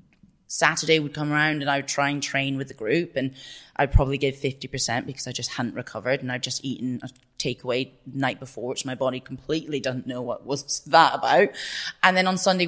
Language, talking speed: English, 220 wpm